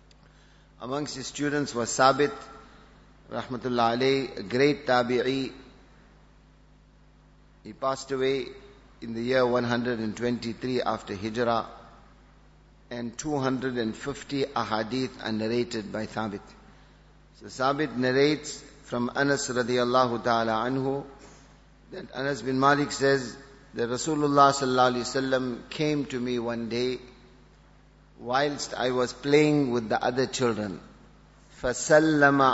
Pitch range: 120-135 Hz